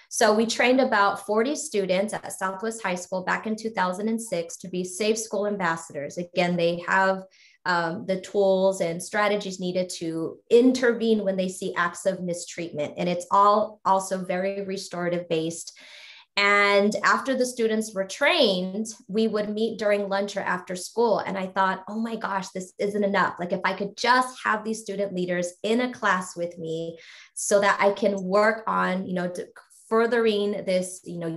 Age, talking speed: 20-39, 175 wpm